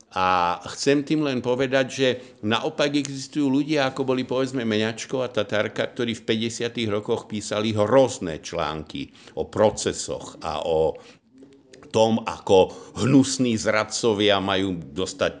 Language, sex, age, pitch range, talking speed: Slovak, male, 60-79, 90-125 Hz, 125 wpm